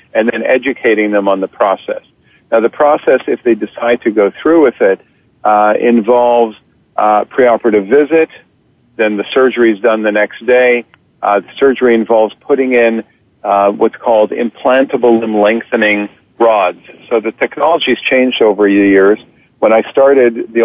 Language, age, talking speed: English, 50-69, 160 wpm